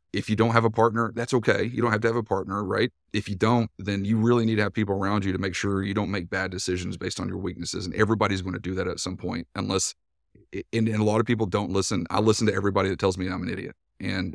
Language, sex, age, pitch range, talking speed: English, male, 30-49, 95-115 Hz, 290 wpm